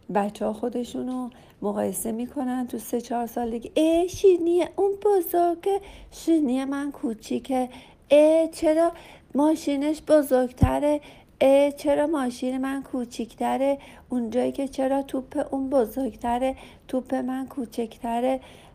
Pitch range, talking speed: 200-265 Hz, 110 wpm